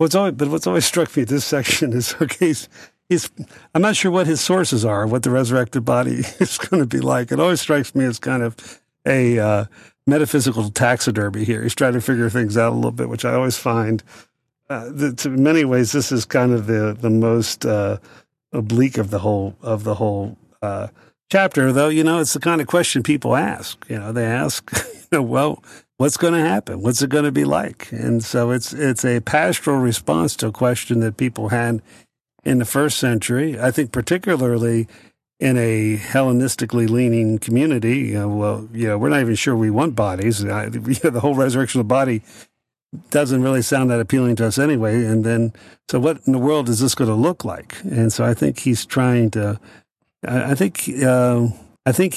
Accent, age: American, 50-69